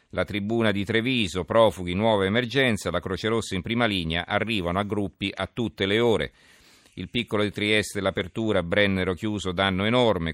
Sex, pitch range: male, 85-105 Hz